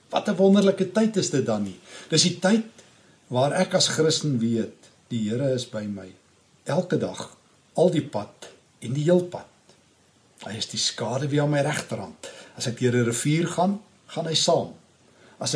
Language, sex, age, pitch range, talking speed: English, male, 60-79, 115-180 Hz, 185 wpm